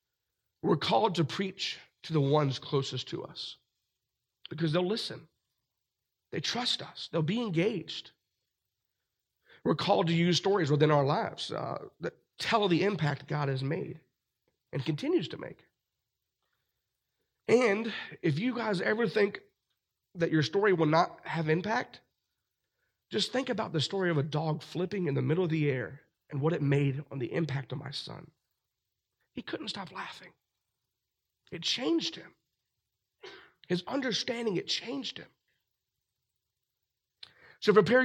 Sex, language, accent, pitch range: male, English, American, 145-205 Hz